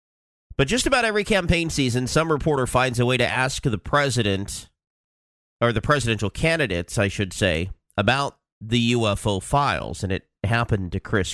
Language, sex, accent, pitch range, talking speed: English, male, American, 100-140 Hz, 165 wpm